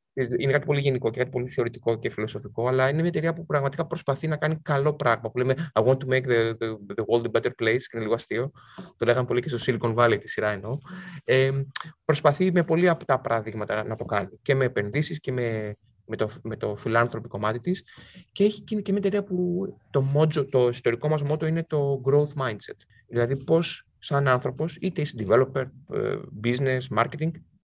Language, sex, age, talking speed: Greek, male, 20-39, 205 wpm